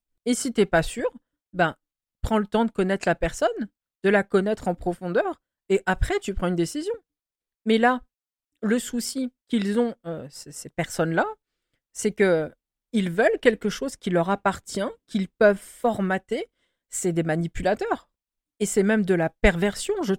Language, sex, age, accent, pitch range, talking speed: French, female, 50-69, French, 180-240 Hz, 165 wpm